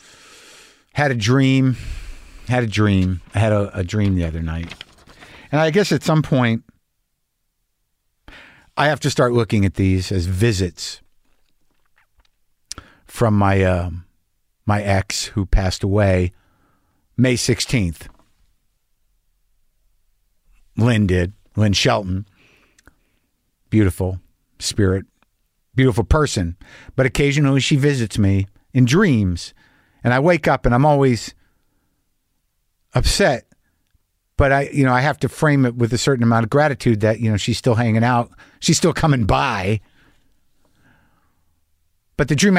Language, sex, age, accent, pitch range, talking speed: English, male, 50-69, American, 95-145 Hz, 130 wpm